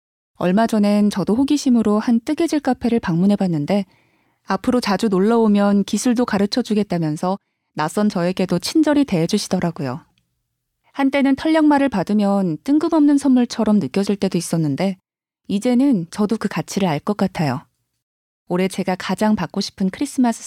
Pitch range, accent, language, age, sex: 180-230 Hz, native, Korean, 20-39, female